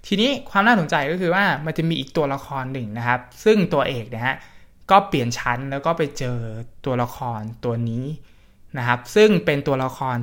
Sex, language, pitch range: male, Thai, 125-165 Hz